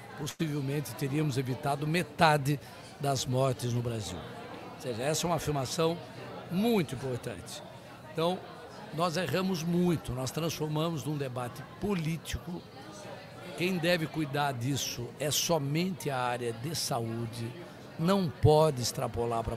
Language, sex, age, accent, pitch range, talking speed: Portuguese, male, 60-79, Brazilian, 130-170 Hz, 120 wpm